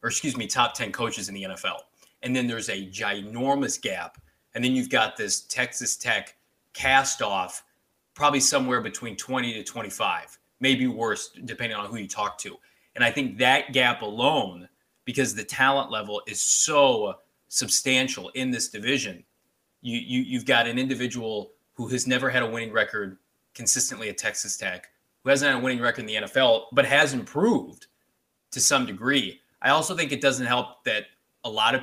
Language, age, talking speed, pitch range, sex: English, 20-39, 175 wpm, 110-130 Hz, male